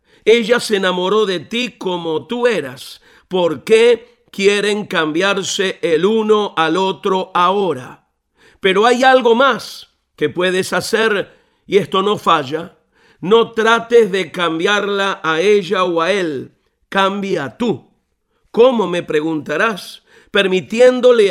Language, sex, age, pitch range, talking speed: Spanish, male, 50-69, 180-235 Hz, 120 wpm